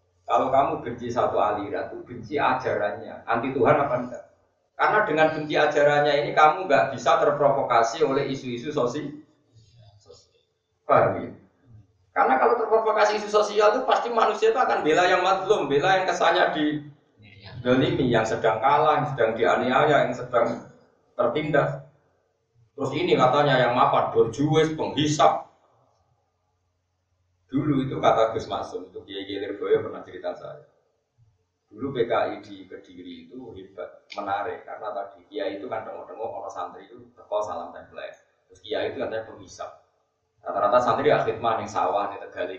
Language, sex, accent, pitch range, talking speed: Indonesian, male, native, 100-150 Hz, 140 wpm